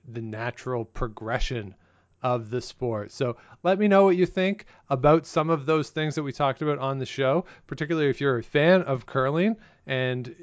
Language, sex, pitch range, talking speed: English, male, 120-150 Hz, 190 wpm